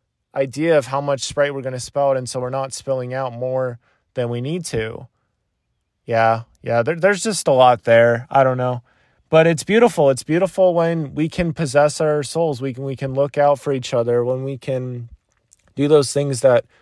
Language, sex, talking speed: English, male, 205 wpm